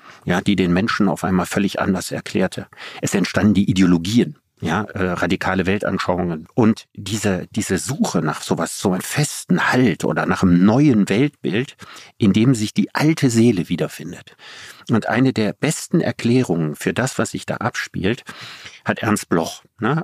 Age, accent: 50-69, German